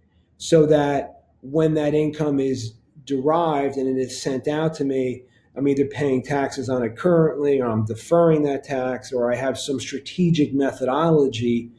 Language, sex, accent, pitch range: English, male, American, 125-155 Hz